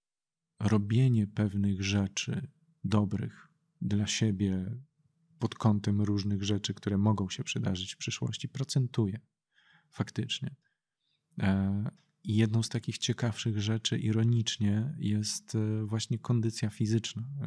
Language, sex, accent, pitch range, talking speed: Polish, male, native, 100-115 Hz, 100 wpm